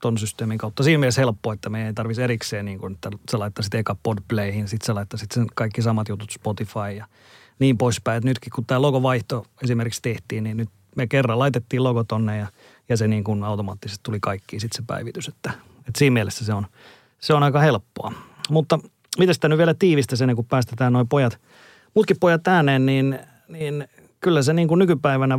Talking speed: 190 wpm